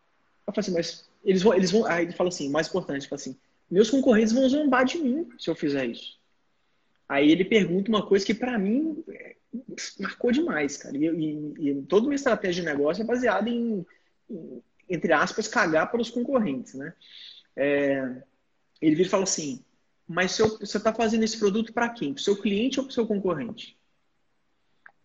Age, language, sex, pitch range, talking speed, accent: 20-39, Portuguese, male, 175-255 Hz, 185 wpm, Brazilian